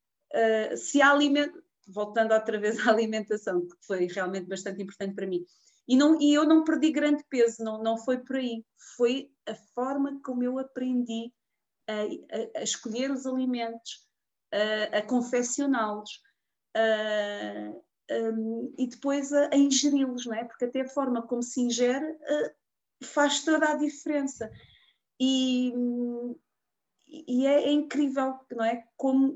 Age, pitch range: 30-49, 230-295 Hz